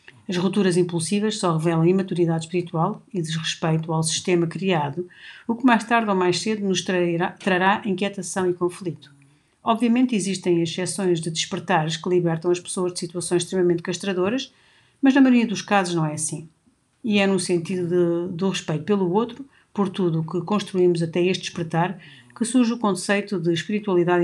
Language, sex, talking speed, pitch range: Portuguese, female, 170 wpm, 170-200 Hz